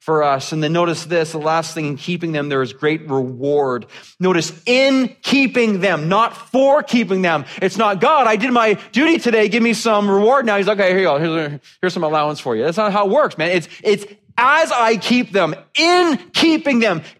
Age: 30-49